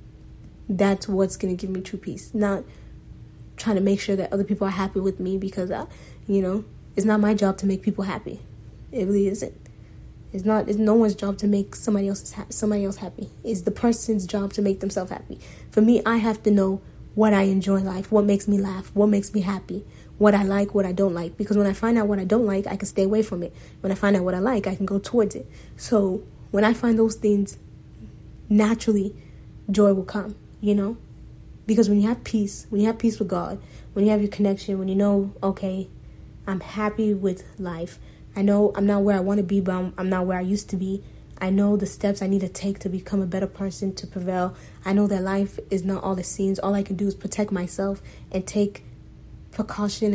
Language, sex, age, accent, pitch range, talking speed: English, female, 20-39, American, 195-210 Hz, 235 wpm